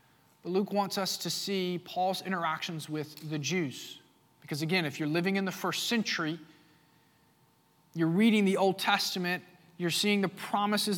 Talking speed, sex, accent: 155 wpm, male, American